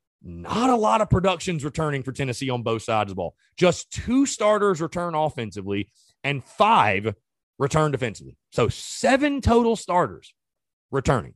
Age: 30-49